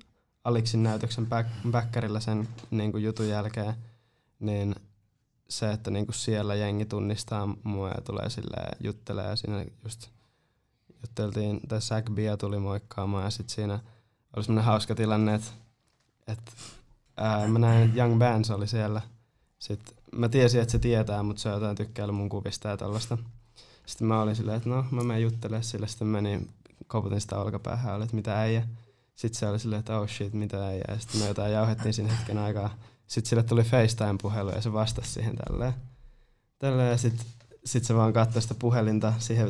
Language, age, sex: Finnish, 20-39, male